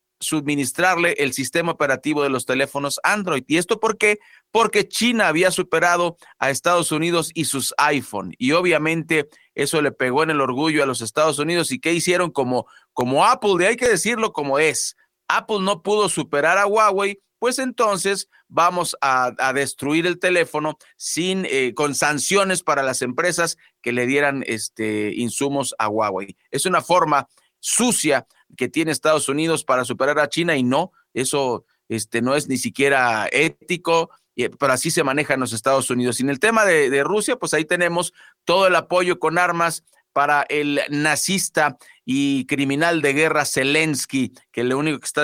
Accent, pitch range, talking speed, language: Mexican, 140-180 Hz, 175 wpm, Spanish